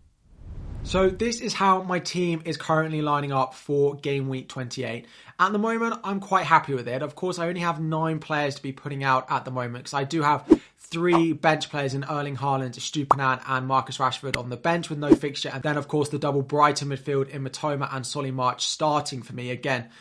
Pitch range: 130-155 Hz